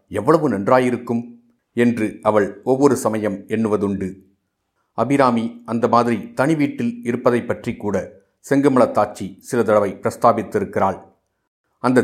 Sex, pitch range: male, 100-125 Hz